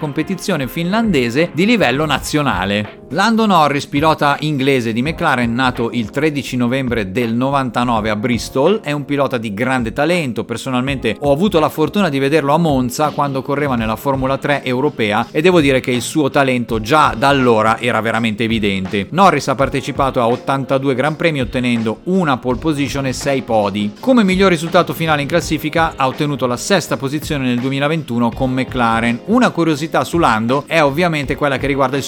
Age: 40-59